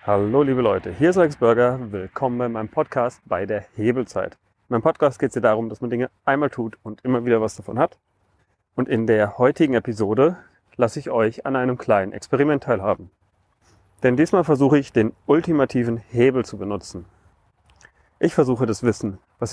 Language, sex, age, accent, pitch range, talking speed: German, male, 40-59, German, 115-140 Hz, 180 wpm